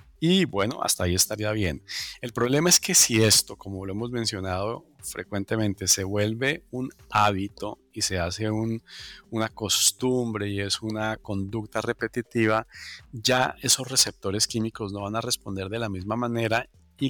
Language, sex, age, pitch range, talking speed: Spanish, male, 40-59, 95-120 Hz, 155 wpm